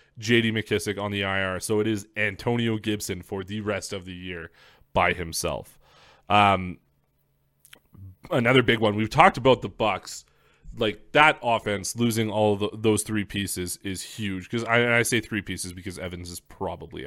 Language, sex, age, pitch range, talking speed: English, male, 20-39, 95-110 Hz, 170 wpm